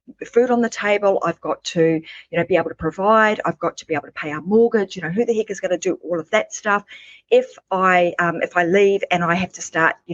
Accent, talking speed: Australian, 280 wpm